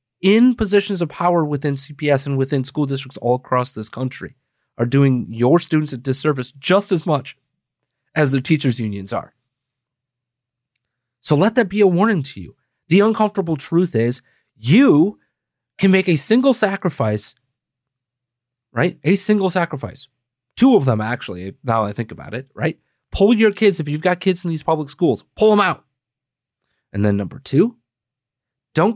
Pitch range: 125-190 Hz